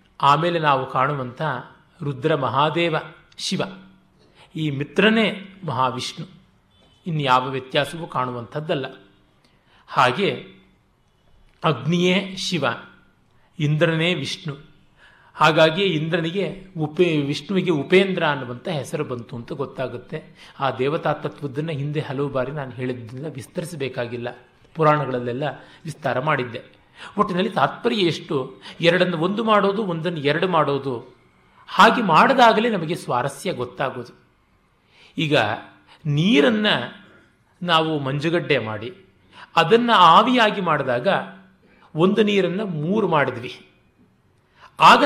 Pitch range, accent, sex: 140-185 Hz, native, male